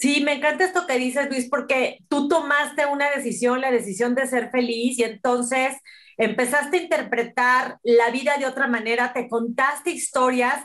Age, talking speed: 40-59, 170 wpm